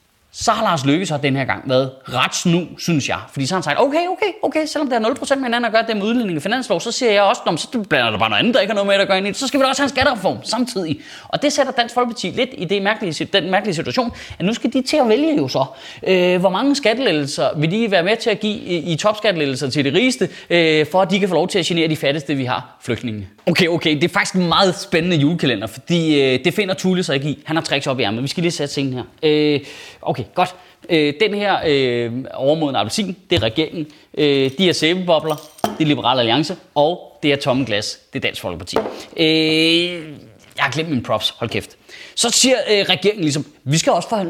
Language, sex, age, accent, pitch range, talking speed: Danish, male, 20-39, native, 150-215 Hz, 255 wpm